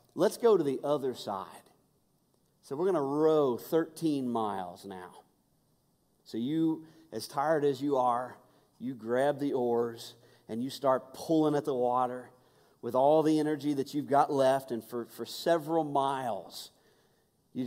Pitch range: 120-155 Hz